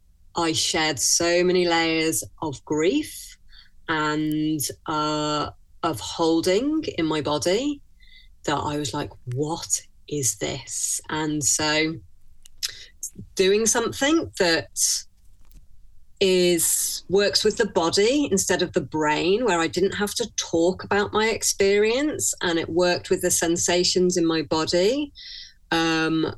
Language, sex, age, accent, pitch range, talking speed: English, female, 30-49, British, 150-180 Hz, 125 wpm